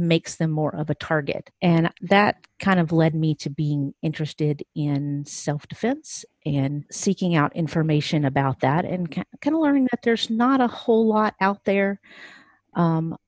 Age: 40-59